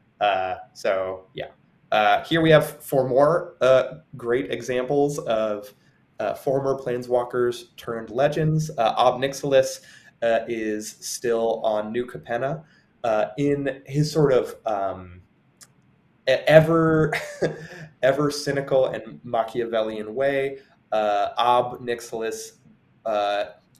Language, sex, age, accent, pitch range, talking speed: English, male, 20-39, American, 105-150 Hz, 110 wpm